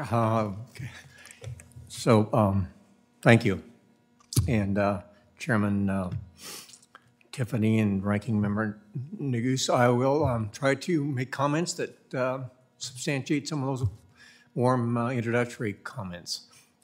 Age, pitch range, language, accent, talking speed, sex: 60-79, 115-150 Hz, English, American, 115 wpm, male